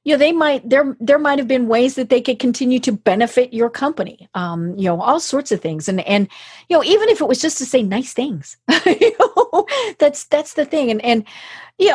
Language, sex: English, female